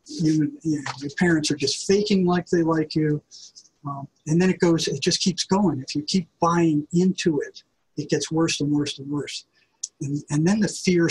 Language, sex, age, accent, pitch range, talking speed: English, male, 50-69, American, 145-170 Hz, 195 wpm